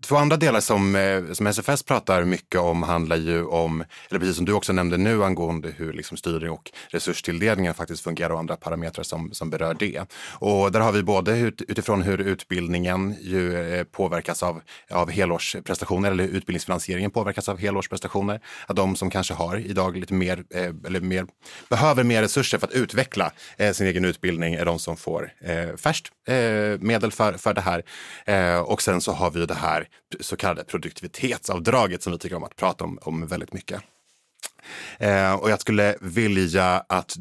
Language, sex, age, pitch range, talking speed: Swedish, male, 30-49, 85-105 Hz, 180 wpm